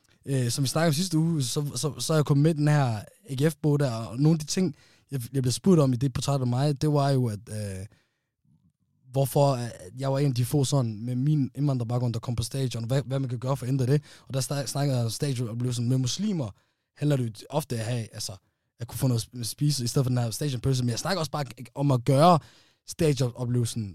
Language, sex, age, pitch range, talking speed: Danish, male, 20-39, 120-145 Hz, 260 wpm